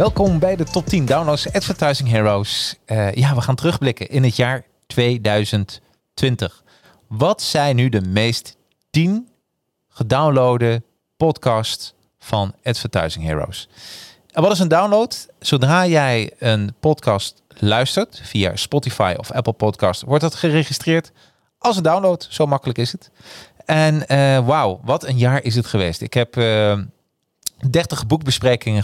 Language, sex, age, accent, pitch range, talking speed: Dutch, male, 40-59, Dutch, 105-140 Hz, 140 wpm